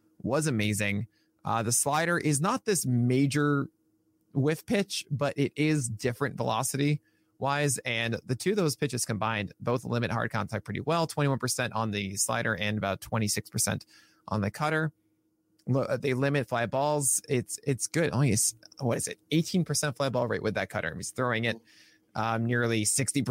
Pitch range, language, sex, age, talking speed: 115-150 Hz, English, male, 20-39, 170 wpm